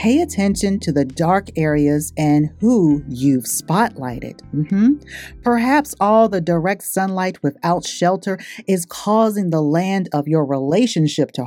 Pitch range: 155-215 Hz